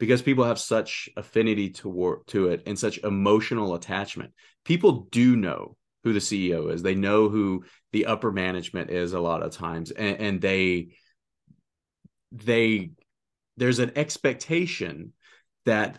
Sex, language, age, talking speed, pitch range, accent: male, English, 30-49, 145 wpm, 90-120 Hz, American